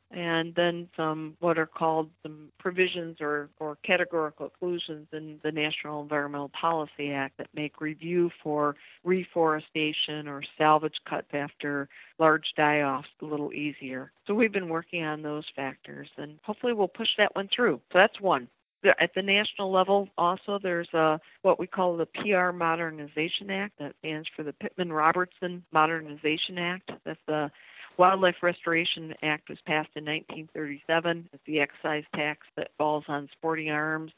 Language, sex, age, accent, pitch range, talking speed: English, female, 50-69, American, 150-180 Hz, 155 wpm